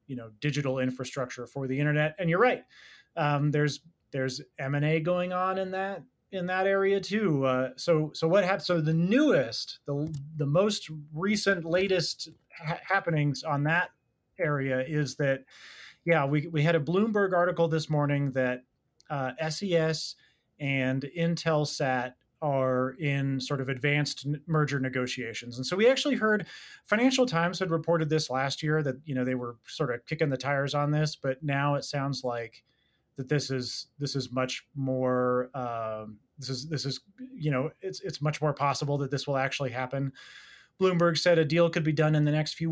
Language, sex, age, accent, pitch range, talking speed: English, male, 30-49, American, 135-170 Hz, 180 wpm